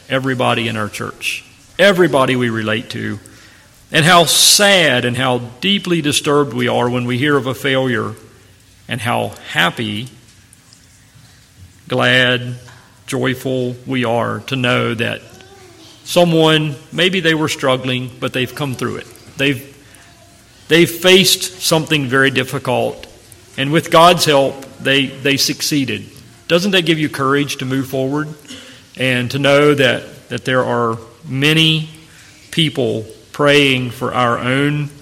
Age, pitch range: 40-59, 115-150 Hz